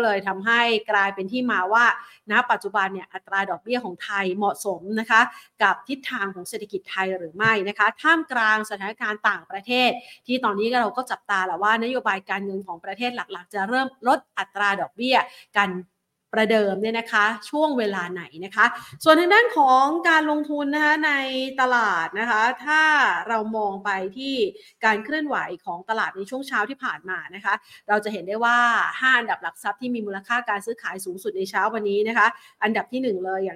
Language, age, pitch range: Thai, 30-49, 200-255 Hz